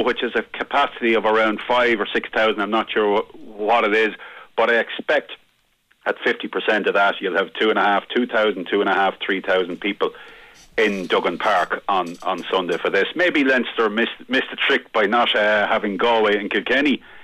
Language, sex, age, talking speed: English, male, 40-59, 205 wpm